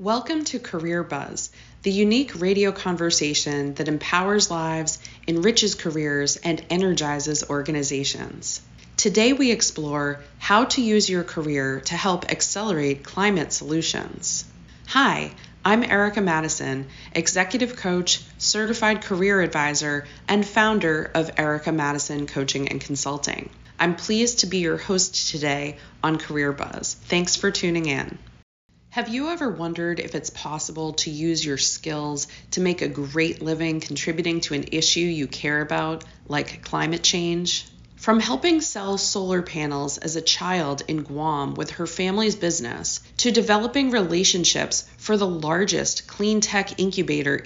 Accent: American